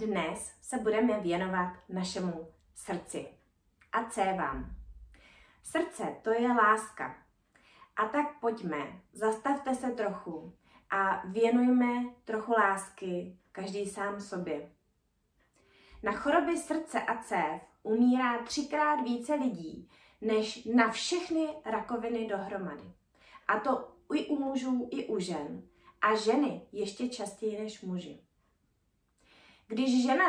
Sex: female